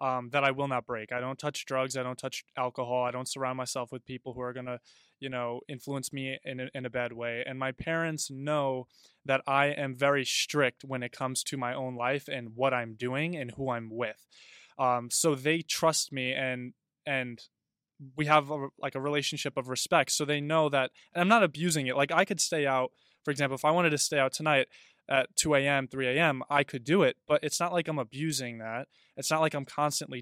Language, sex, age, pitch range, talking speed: English, male, 20-39, 125-150 Hz, 230 wpm